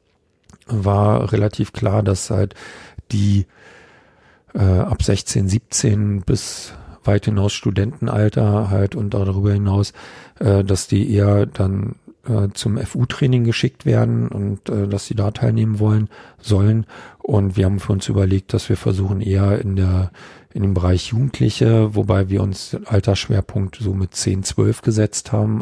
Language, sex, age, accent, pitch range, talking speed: German, male, 50-69, German, 100-110 Hz, 150 wpm